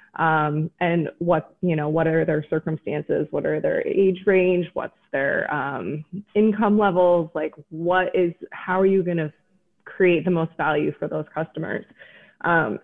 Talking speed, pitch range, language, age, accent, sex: 165 wpm, 160-195 Hz, English, 20-39, American, female